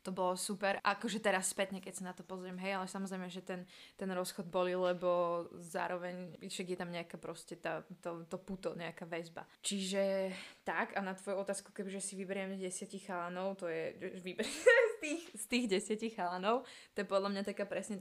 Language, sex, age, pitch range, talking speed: Slovak, female, 20-39, 180-200 Hz, 190 wpm